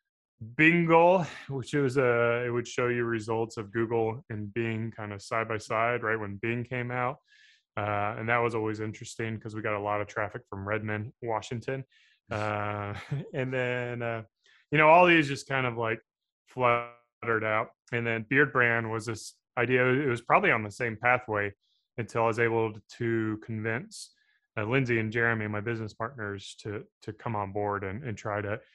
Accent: American